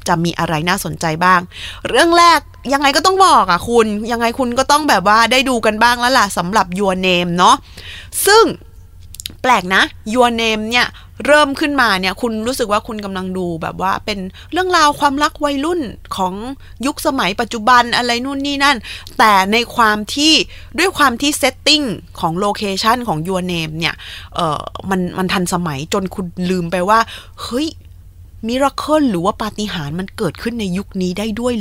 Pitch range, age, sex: 190-265 Hz, 20-39, female